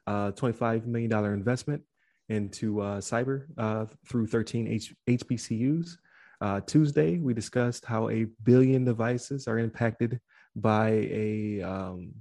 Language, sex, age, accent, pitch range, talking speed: English, male, 20-39, American, 105-120 Hz, 120 wpm